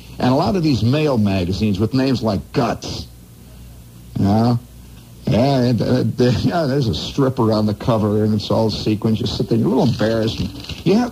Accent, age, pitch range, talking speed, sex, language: American, 60-79, 100-135 Hz, 205 wpm, male, English